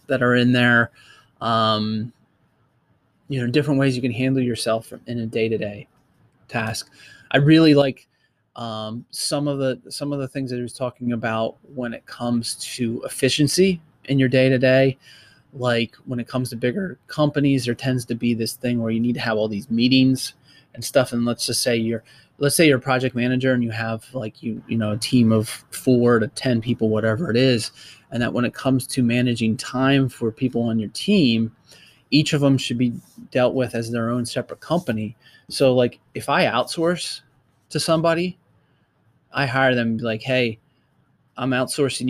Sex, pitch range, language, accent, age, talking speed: male, 115-130 Hz, English, American, 30-49, 185 wpm